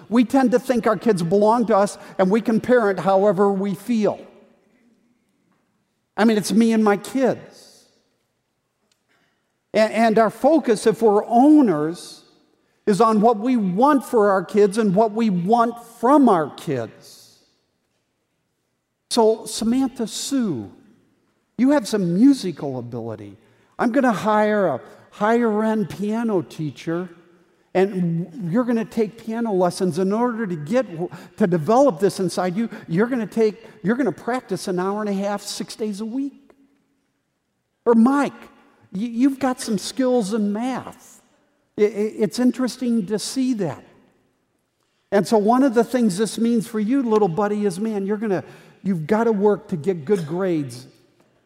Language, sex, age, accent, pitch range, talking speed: English, male, 50-69, American, 190-235 Hz, 150 wpm